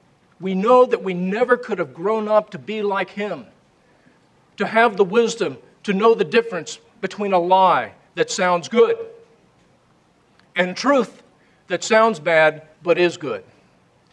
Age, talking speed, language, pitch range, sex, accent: 40-59, 150 wpm, English, 165-220 Hz, male, American